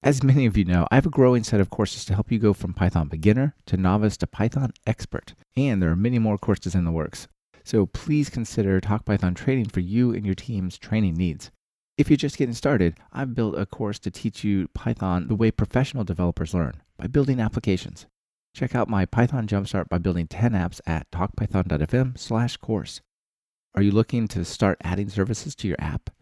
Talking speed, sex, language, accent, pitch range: 205 wpm, male, English, American, 95-120 Hz